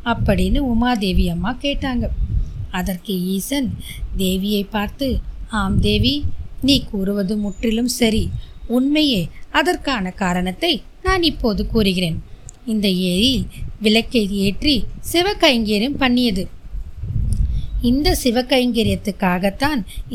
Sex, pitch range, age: female, 195-260 Hz, 20-39